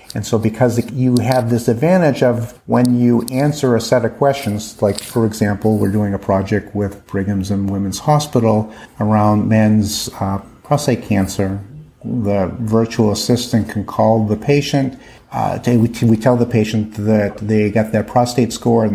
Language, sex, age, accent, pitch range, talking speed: English, male, 50-69, American, 105-125 Hz, 165 wpm